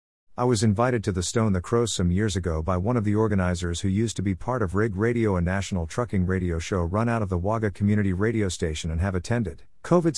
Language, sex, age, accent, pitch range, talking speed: English, male, 50-69, American, 90-115 Hz, 240 wpm